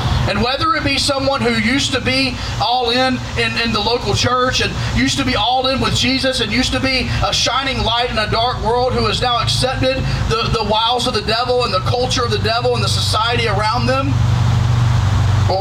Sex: male